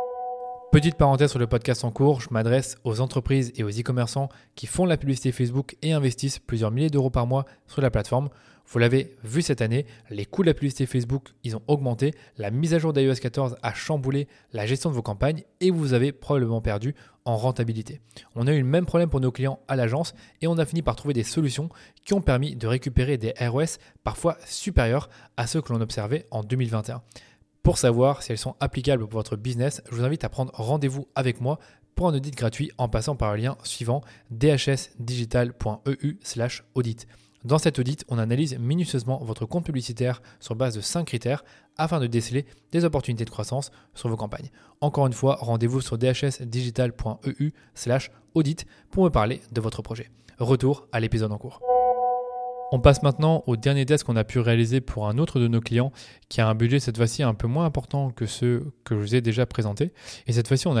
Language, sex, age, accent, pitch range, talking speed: French, male, 20-39, French, 115-140 Hz, 200 wpm